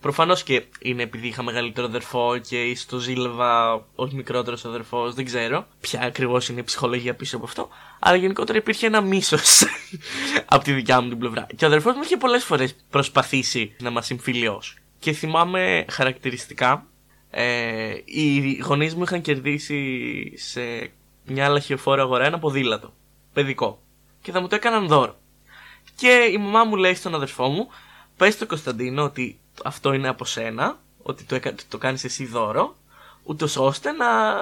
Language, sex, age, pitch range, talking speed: Greek, male, 20-39, 125-200 Hz, 160 wpm